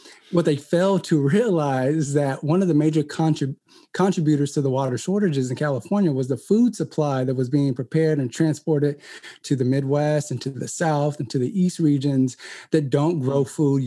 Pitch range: 140-170 Hz